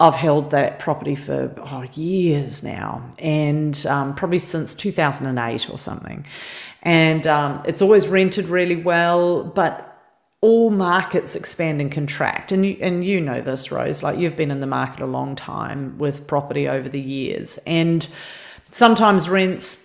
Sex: female